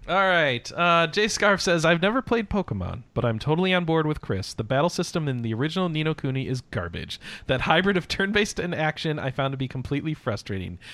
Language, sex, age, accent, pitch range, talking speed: English, male, 40-59, American, 125-175 Hz, 215 wpm